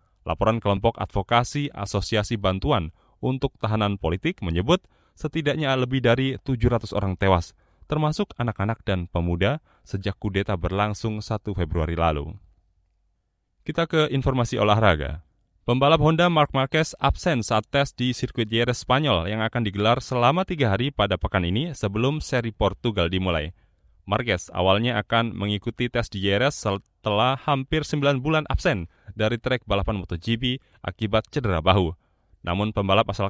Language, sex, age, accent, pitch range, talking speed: Indonesian, male, 20-39, native, 95-130 Hz, 135 wpm